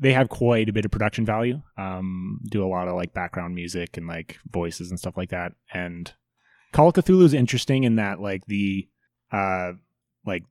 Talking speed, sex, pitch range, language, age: 200 wpm, male, 95-120 Hz, English, 20-39